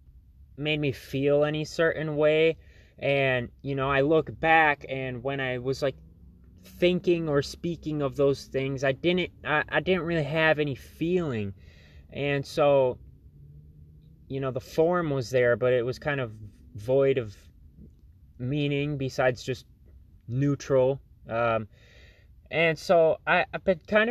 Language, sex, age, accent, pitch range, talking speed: English, male, 20-39, American, 105-145 Hz, 140 wpm